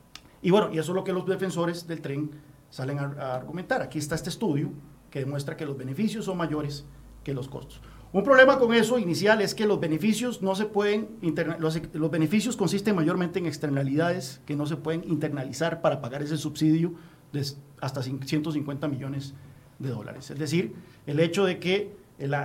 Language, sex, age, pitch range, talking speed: Spanish, male, 40-59, 145-190 Hz, 190 wpm